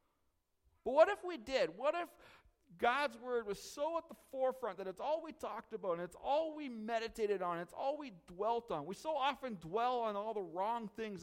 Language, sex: English, male